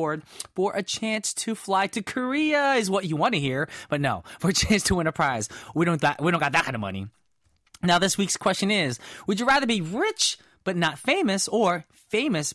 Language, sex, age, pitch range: English, male, 20-39, 160-225 Hz